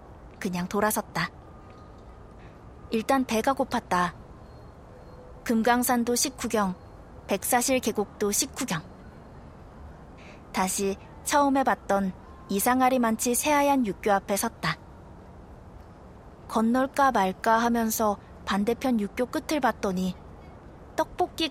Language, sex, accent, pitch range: Korean, female, native, 190-250 Hz